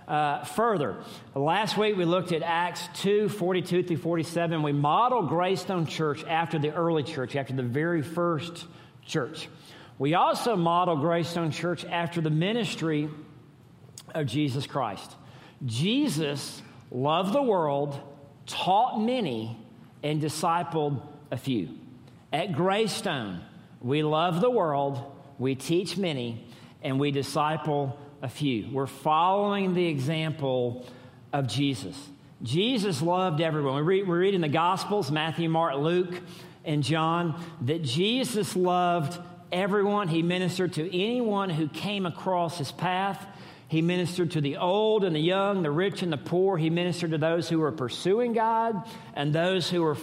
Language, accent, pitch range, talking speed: English, American, 145-180 Hz, 140 wpm